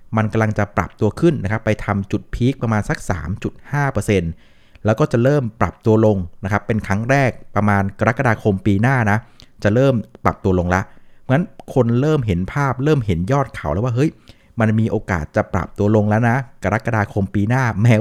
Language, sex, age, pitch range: Thai, male, 60-79, 100-125 Hz